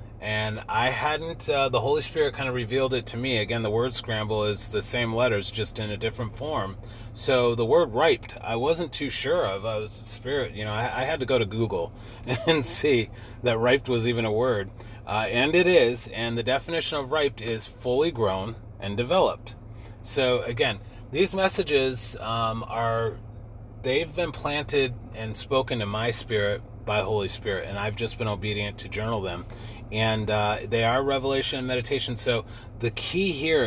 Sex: male